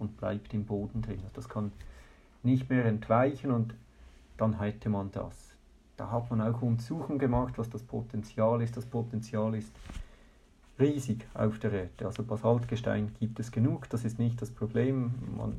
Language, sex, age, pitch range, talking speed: German, male, 50-69, 105-120 Hz, 165 wpm